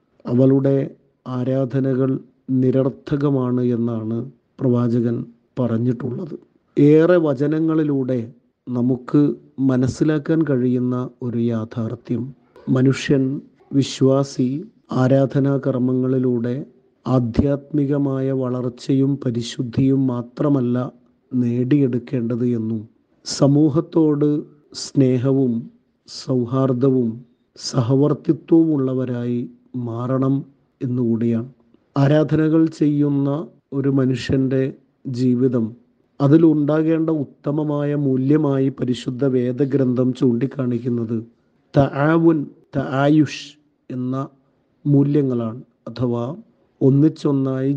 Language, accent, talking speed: Malayalam, native, 60 wpm